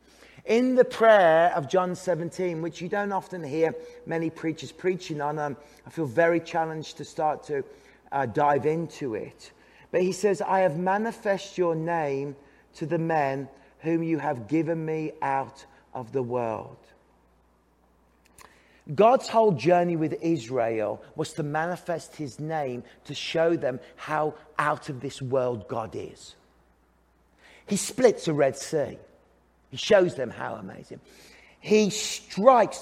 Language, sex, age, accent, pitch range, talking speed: English, male, 40-59, British, 145-190 Hz, 145 wpm